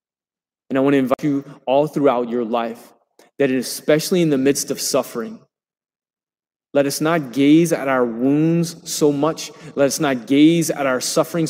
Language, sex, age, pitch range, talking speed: English, male, 20-39, 140-170 Hz, 170 wpm